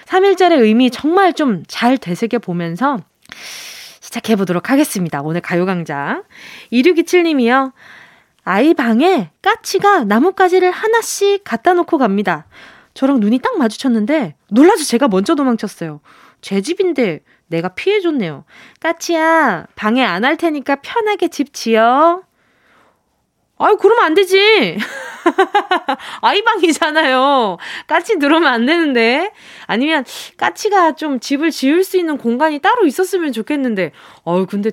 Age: 20-39